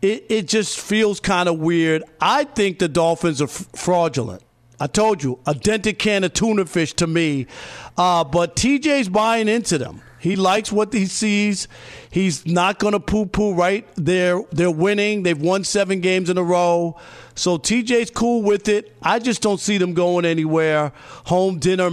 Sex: male